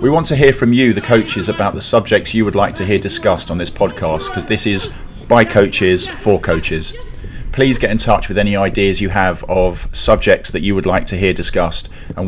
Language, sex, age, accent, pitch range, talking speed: English, male, 40-59, British, 95-115 Hz, 225 wpm